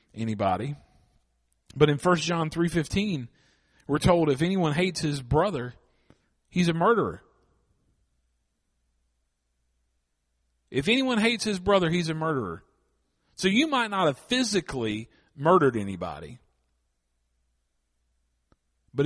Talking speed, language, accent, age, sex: 105 wpm, English, American, 40-59, male